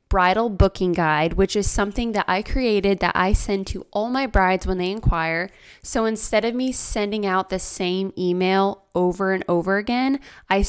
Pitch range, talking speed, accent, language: 185-235 Hz, 185 wpm, American, English